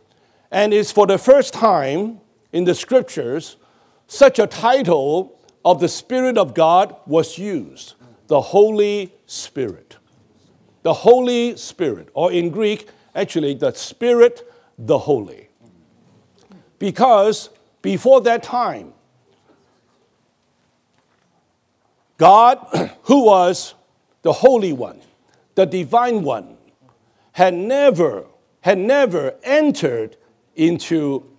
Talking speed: 100 wpm